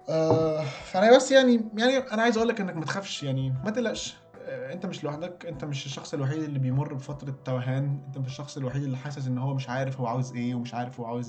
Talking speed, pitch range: 230 wpm, 135-175 Hz